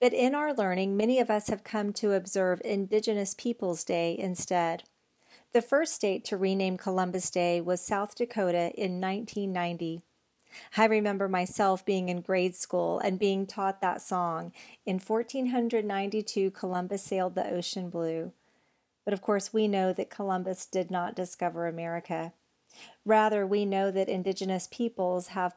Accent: American